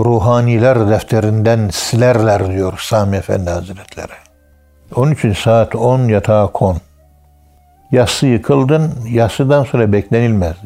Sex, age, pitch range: male, 60-79, 95-115 Hz